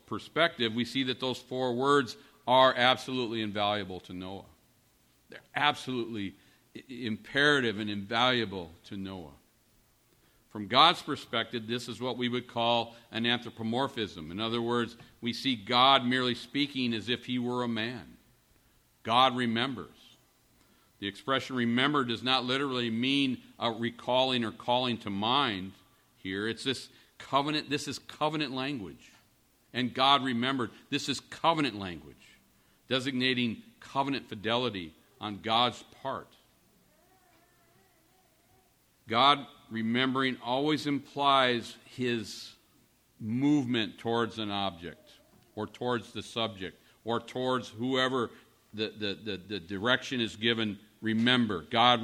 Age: 50-69